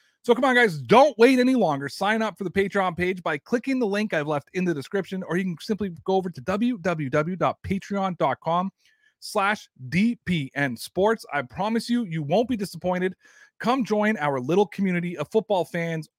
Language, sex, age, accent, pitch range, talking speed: English, male, 30-49, American, 150-200 Hz, 180 wpm